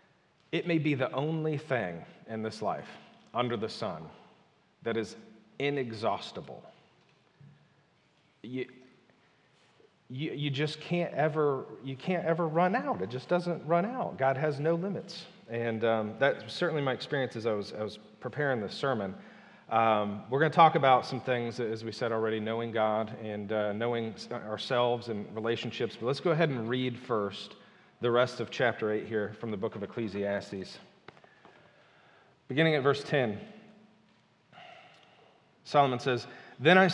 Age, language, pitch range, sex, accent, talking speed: 40-59, English, 115-165 Hz, male, American, 155 wpm